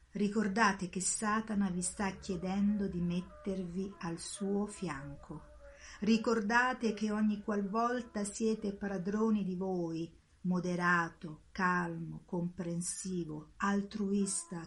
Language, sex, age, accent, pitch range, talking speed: Italian, female, 50-69, native, 180-230 Hz, 95 wpm